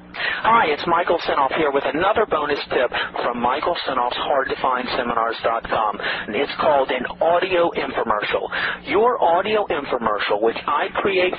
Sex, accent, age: male, American, 40-59